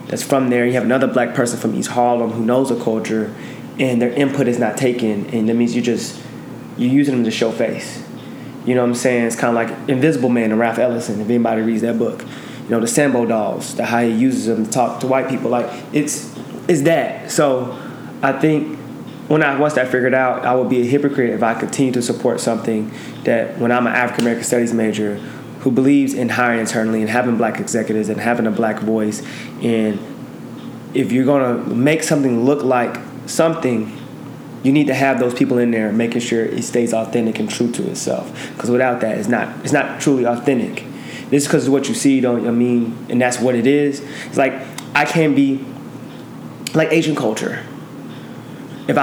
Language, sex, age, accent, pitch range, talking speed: Ukrainian, male, 20-39, American, 115-135 Hz, 215 wpm